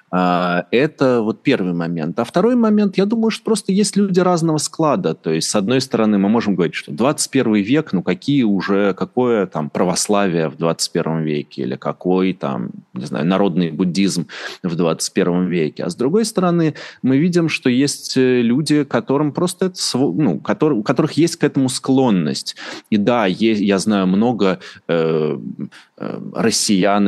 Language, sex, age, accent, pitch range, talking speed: Russian, male, 20-39, native, 90-145 Hz, 160 wpm